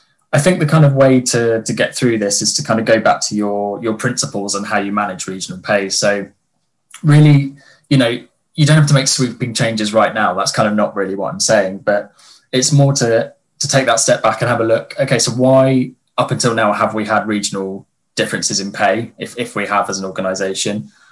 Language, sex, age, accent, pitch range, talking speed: English, male, 10-29, British, 100-125 Hz, 230 wpm